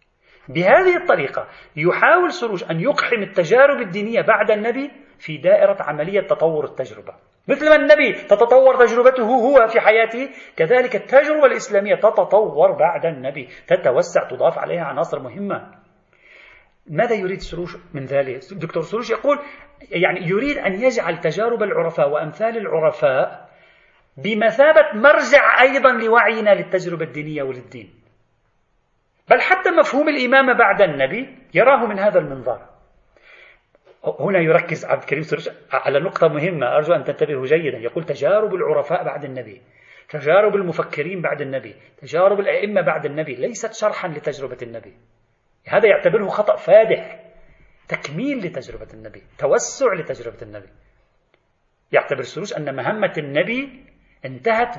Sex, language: male, Arabic